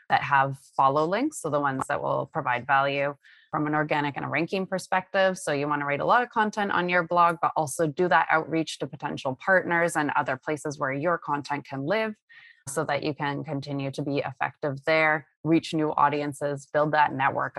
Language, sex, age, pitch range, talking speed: English, female, 20-39, 145-170 Hz, 210 wpm